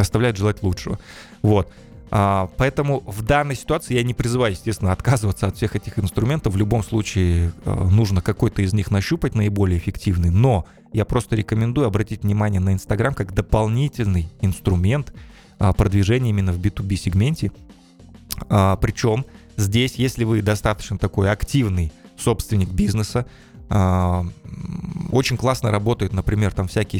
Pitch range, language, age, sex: 95-120 Hz, Russian, 20-39, male